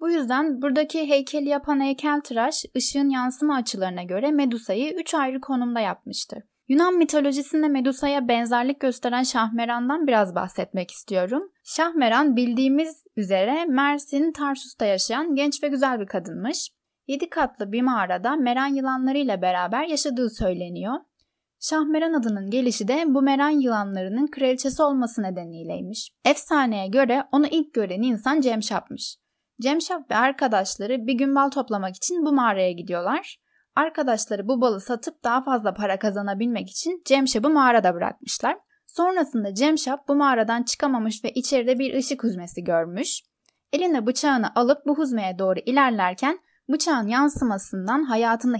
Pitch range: 220-290 Hz